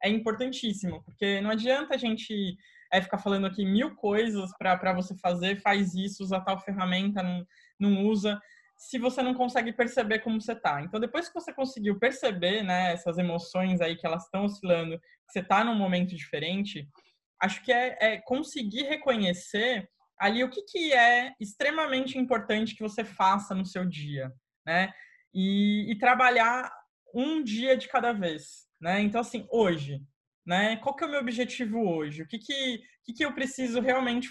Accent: Brazilian